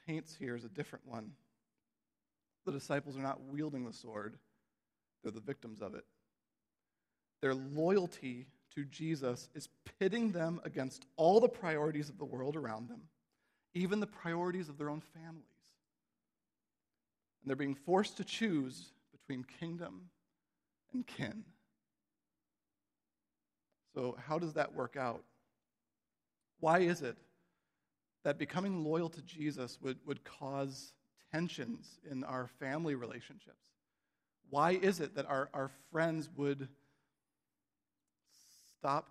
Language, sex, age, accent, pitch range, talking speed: English, male, 40-59, American, 135-170 Hz, 125 wpm